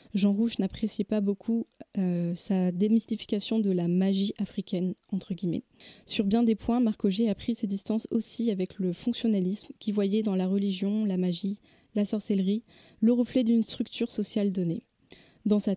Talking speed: 170 wpm